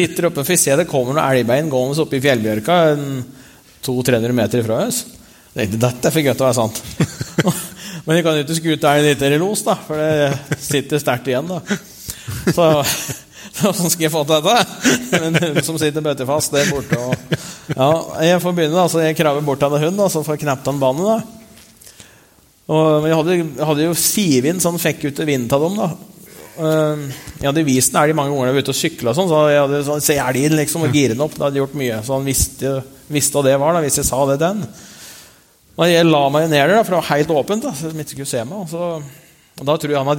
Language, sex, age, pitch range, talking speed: English, male, 30-49, 140-170 Hz, 210 wpm